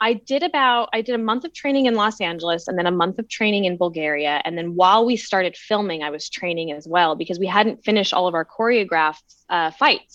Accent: American